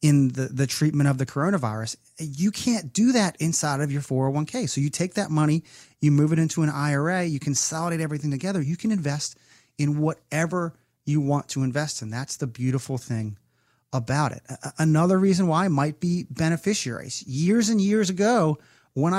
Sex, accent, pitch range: male, American, 135-175 Hz